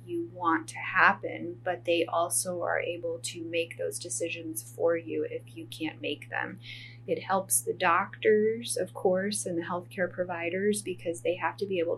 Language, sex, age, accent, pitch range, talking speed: English, female, 20-39, American, 155-180 Hz, 180 wpm